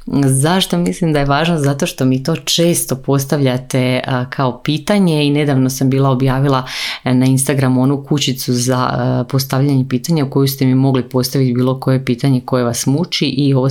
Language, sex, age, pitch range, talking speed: Croatian, female, 30-49, 125-145 Hz, 170 wpm